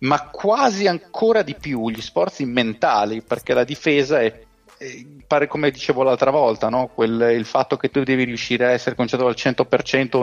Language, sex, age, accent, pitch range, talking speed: Italian, male, 30-49, native, 105-125 Hz, 180 wpm